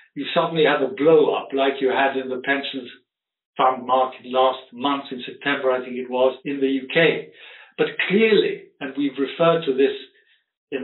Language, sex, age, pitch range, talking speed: English, male, 60-79, 135-180 Hz, 185 wpm